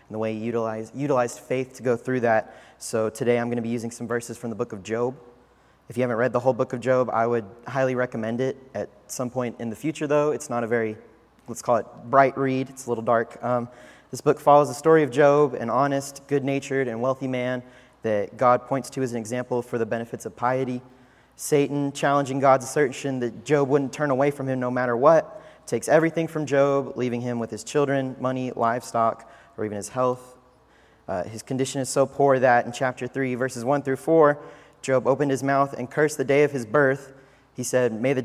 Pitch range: 120-140 Hz